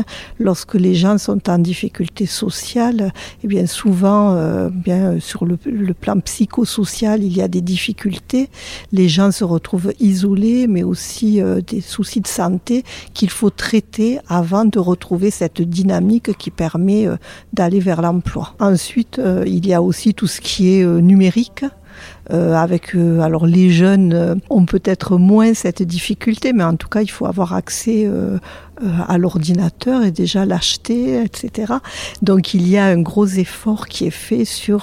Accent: French